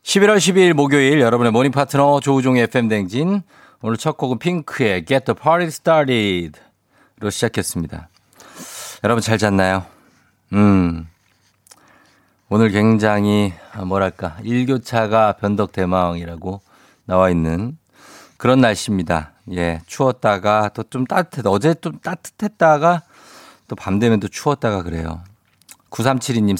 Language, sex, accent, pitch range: Korean, male, native, 95-135 Hz